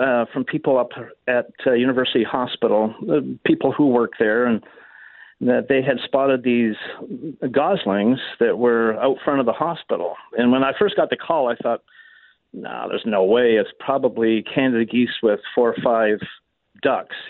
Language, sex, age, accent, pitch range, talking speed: English, male, 50-69, American, 120-140 Hz, 170 wpm